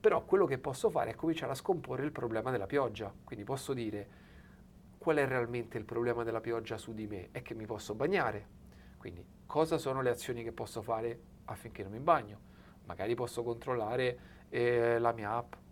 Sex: male